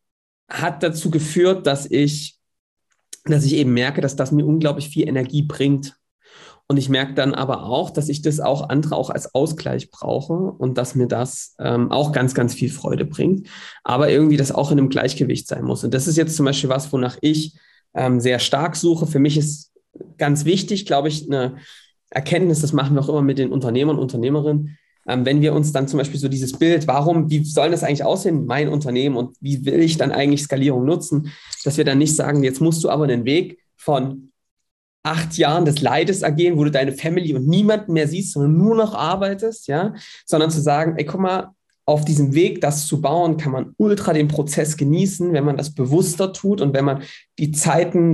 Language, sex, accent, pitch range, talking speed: German, male, German, 135-165 Hz, 210 wpm